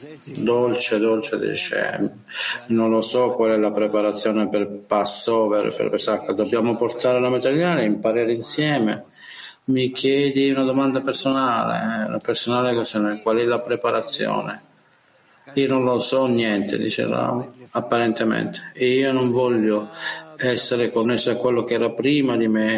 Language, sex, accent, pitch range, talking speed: Italian, male, native, 115-135 Hz, 140 wpm